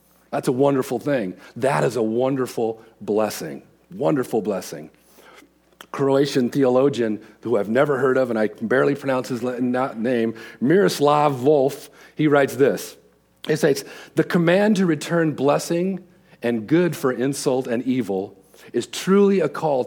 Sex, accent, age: male, American, 40-59